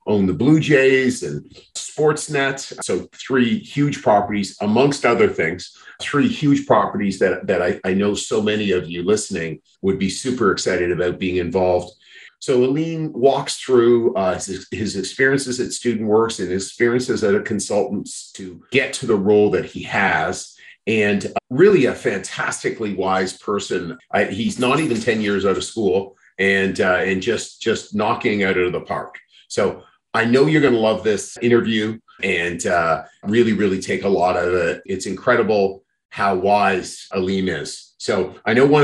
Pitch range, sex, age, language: 95-135 Hz, male, 40-59, English